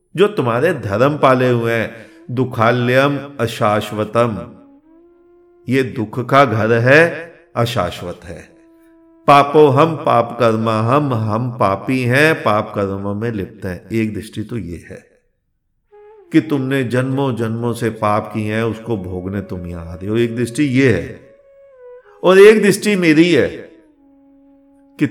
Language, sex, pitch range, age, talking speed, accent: Hindi, male, 110-170 Hz, 50-69, 130 wpm, native